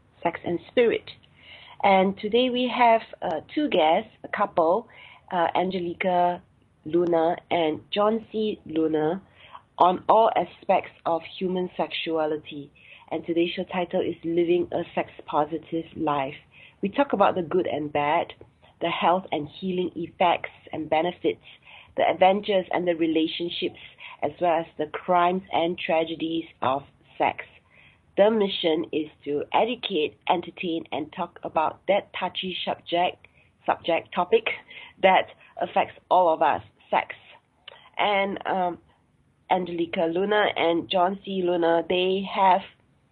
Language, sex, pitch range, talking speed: English, female, 160-190 Hz, 130 wpm